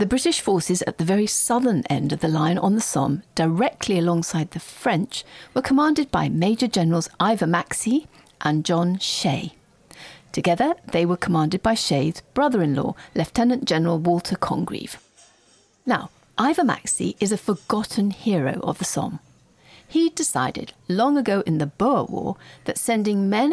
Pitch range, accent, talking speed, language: 170-245 Hz, British, 155 wpm, English